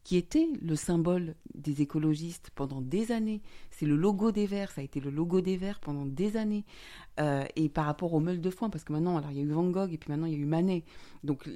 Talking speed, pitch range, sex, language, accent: 265 wpm, 145-185 Hz, female, French, French